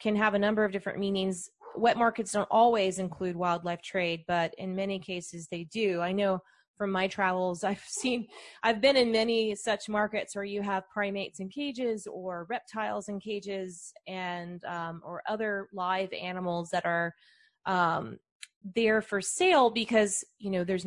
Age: 30-49